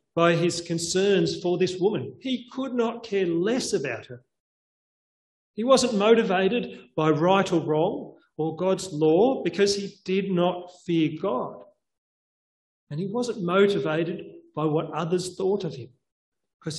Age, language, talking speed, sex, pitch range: 40-59, English, 145 wpm, male, 155-200 Hz